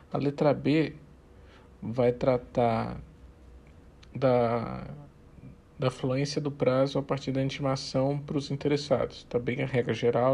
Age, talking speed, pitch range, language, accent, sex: 50-69, 130 wpm, 110-140 Hz, Portuguese, Brazilian, male